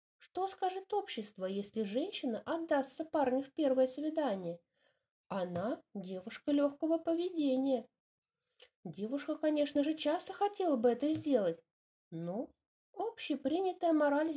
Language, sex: English, female